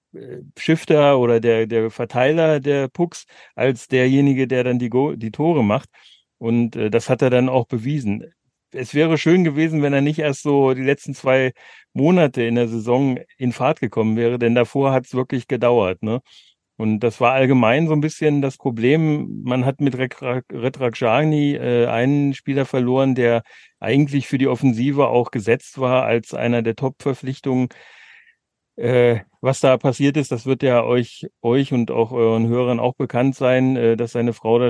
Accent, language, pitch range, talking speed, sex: German, German, 115-135 Hz, 175 wpm, male